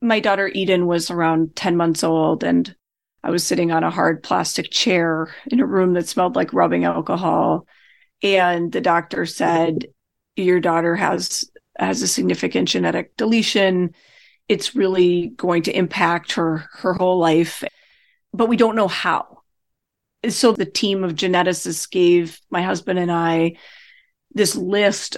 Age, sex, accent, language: 30-49, female, American, English